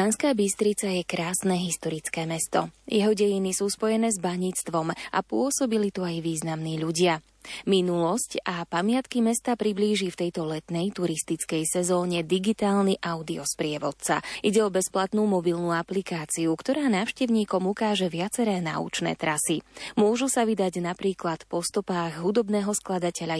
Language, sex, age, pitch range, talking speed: Slovak, female, 20-39, 175-220 Hz, 125 wpm